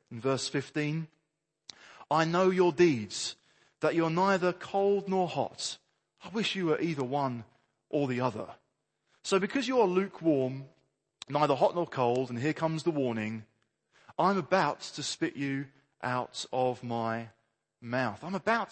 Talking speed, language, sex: 155 wpm, English, male